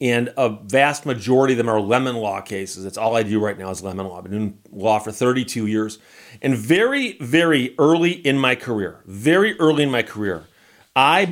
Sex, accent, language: male, American, English